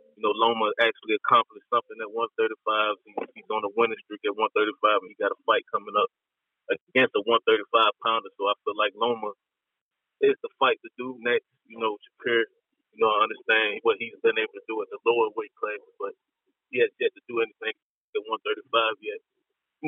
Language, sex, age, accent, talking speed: English, male, 20-39, American, 200 wpm